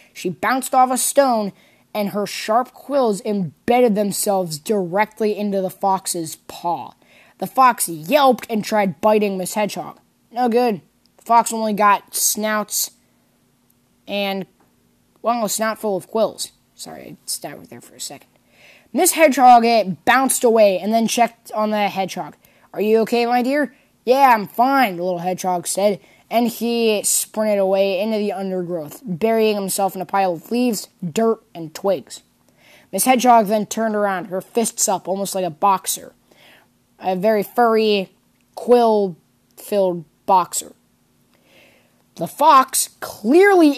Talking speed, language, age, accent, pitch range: 145 wpm, English, 10-29, American, 190-235 Hz